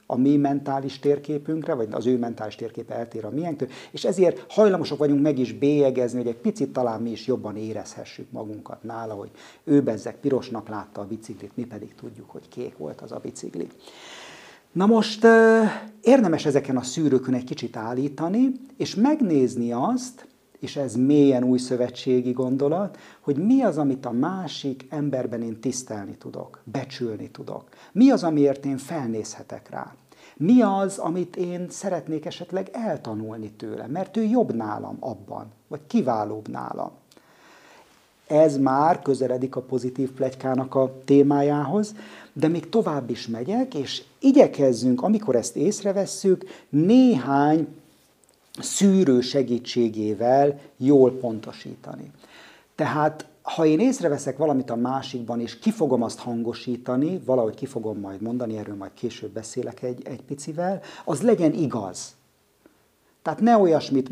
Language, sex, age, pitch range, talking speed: Hungarian, male, 50-69, 120-165 Hz, 140 wpm